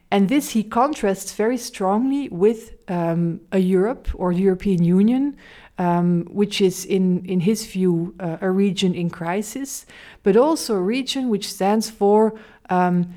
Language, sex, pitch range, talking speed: English, female, 175-220 Hz, 155 wpm